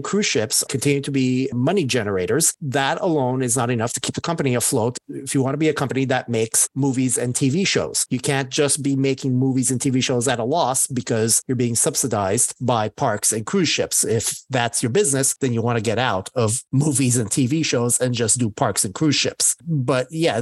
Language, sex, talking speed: English, male, 220 wpm